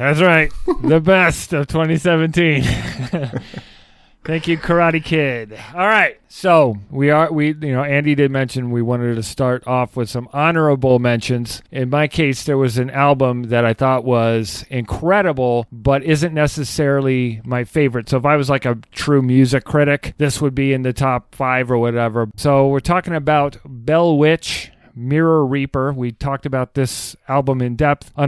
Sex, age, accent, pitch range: male, 40-59, American, 125-155 Hz